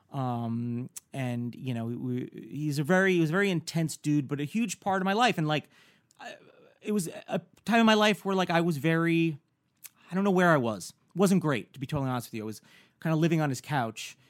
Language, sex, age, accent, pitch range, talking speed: English, male, 30-49, American, 135-185 Hz, 250 wpm